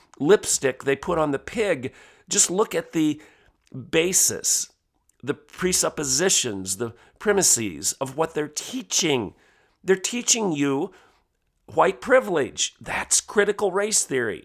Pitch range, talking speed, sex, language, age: 155-215 Hz, 115 wpm, male, English, 40-59